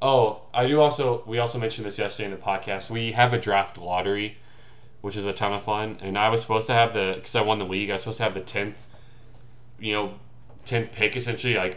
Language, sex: English, male